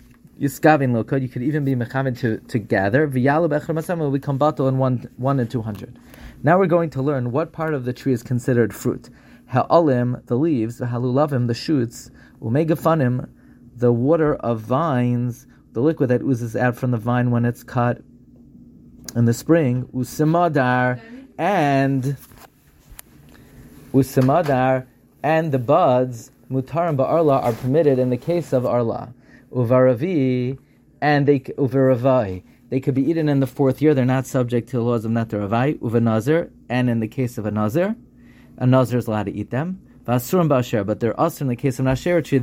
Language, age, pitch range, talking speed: English, 30-49, 120-145 Hz, 155 wpm